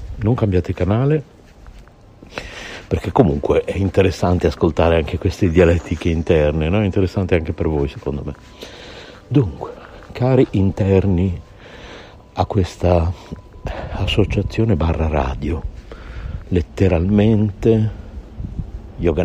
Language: Italian